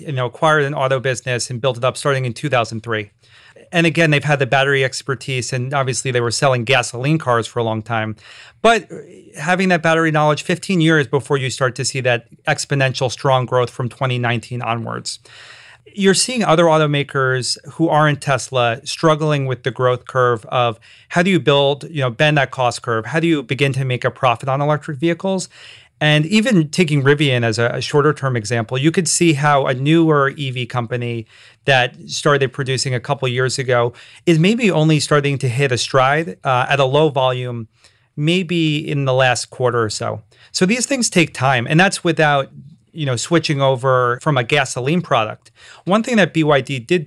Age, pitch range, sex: 30-49, 125-155 Hz, male